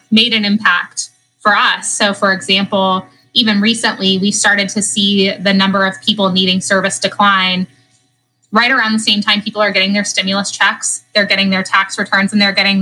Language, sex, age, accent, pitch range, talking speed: English, female, 20-39, American, 190-215 Hz, 185 wpm